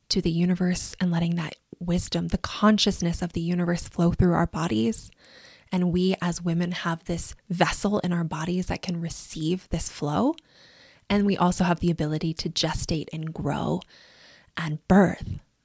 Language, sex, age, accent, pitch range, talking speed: English, female, 20-39, American, 170-210 Hz, 165 wpm